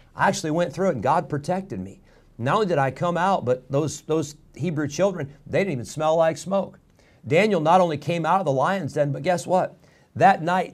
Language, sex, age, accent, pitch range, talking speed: English, male, 50-69, American, 130-170 Hz, 225 wpm